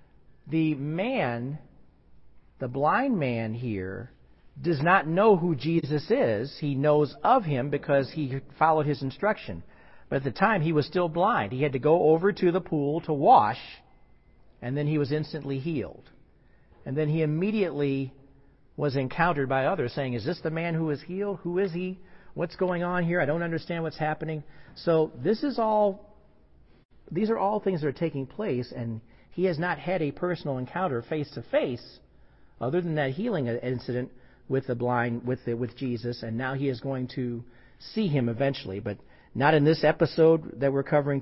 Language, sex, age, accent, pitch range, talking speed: English, male, 50-69, American, 120-165 Hz, 180 wpm